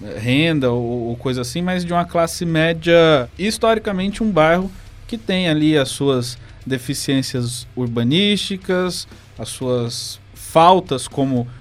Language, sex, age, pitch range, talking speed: Portuguese, male, 20-39, 120-160 Hz, 120 wpm